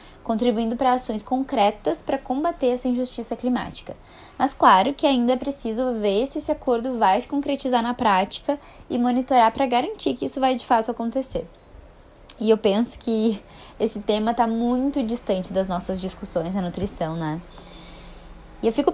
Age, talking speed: 10-29, 165 wpm